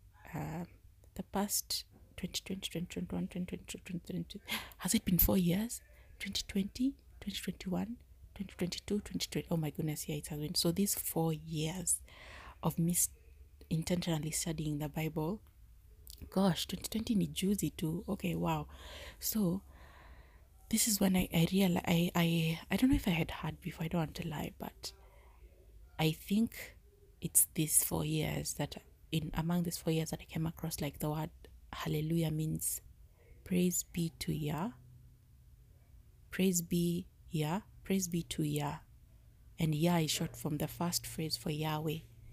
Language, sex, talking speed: English, female, 160 wpm